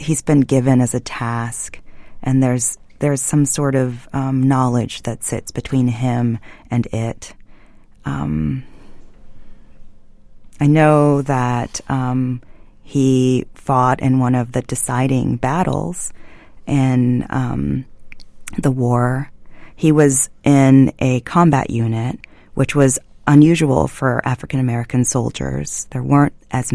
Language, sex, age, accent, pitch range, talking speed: English, female, 30-49, American, 120-135 Hz, 115 wpm